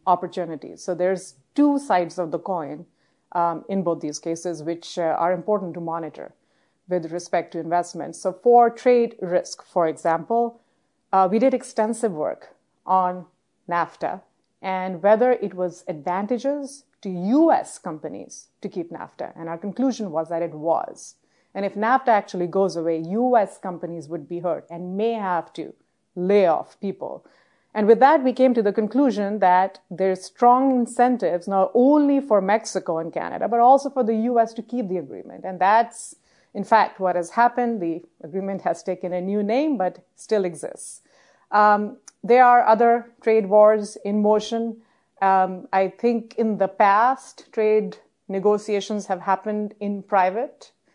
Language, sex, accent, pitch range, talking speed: English, female, Indian, 180-230 Hz, 160 wpm